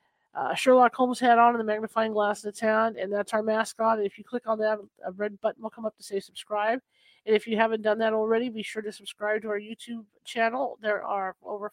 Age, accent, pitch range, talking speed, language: 40-59, American, 210-240 Hz, 250 wpm, English